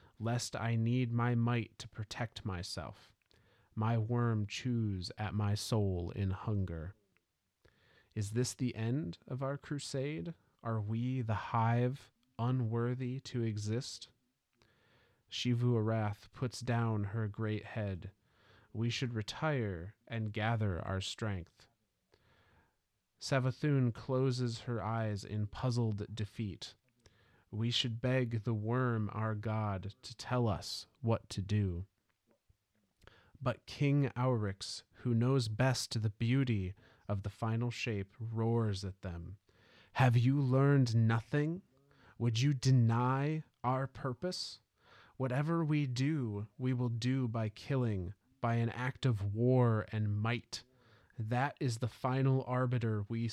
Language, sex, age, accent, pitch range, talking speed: English, male, 30-49, American, 105-125 Hz, 125 wpm